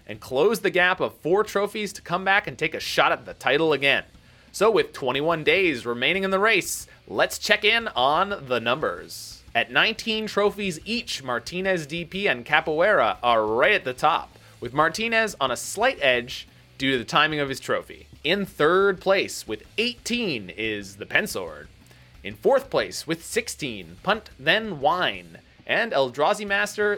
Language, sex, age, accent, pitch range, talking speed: English, male, 30-49, American, 135-210 Hz, 170 wpm